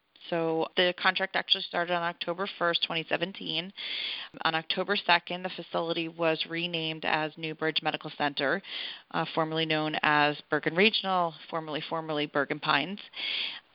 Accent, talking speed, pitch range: American, 130 wpm, 155-175 Hz